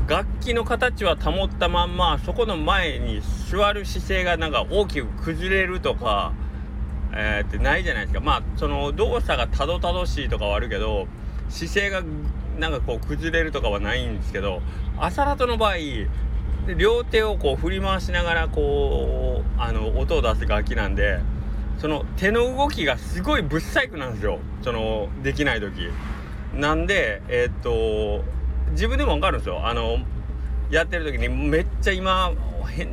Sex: male